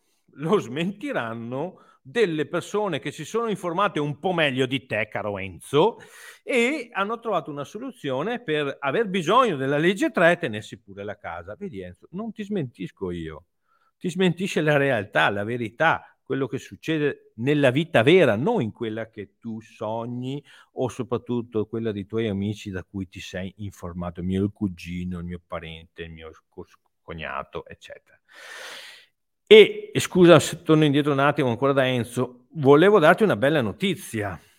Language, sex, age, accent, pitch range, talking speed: Italian, male, 50-69, native, 105-170 Hz, 160 wpm